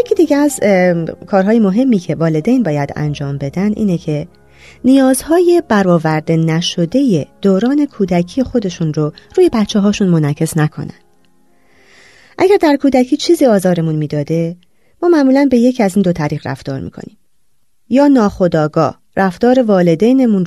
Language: Persian